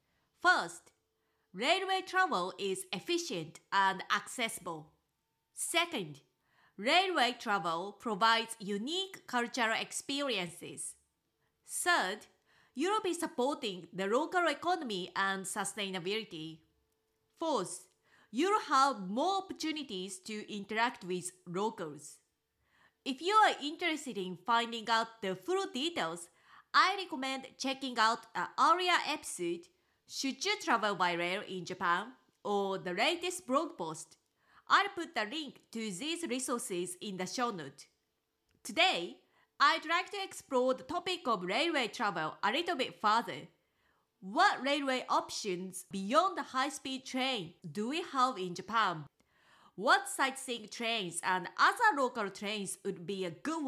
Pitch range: 190-315 Hz